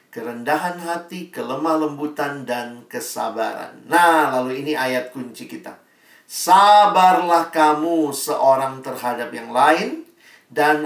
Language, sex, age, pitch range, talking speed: Indonesian, male, 50-69, 135-175 Hz, 105 wpm